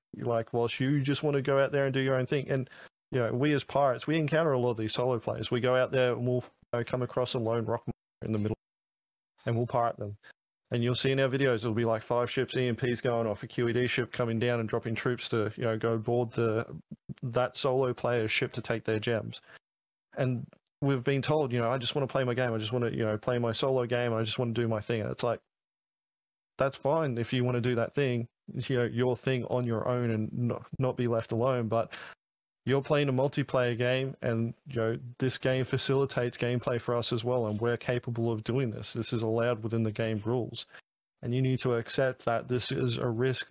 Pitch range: 115-130 Hz